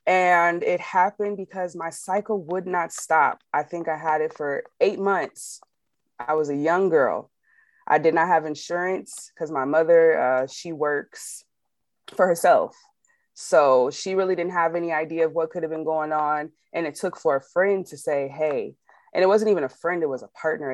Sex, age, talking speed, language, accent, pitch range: female, 20-39, 195 wpm, English, American, 140-180 Hz